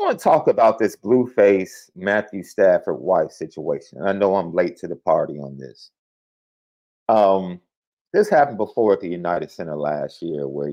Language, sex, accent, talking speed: English, male, American, 175 wpm